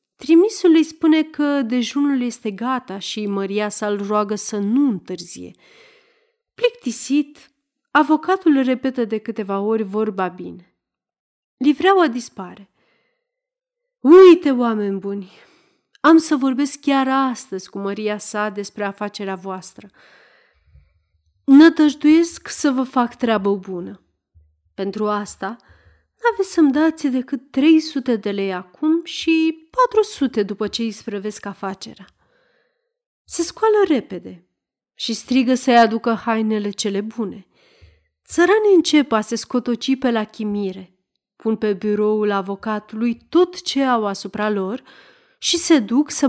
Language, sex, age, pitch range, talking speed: Romanian, female, 40-59, 205-300 Hz, 120 wpm